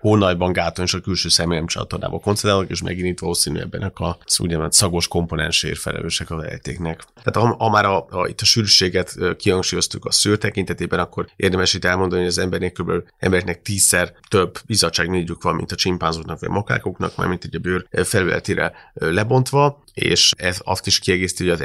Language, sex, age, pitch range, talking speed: Hungarian, male, 30-49, 85-95 Hz, 160 wpm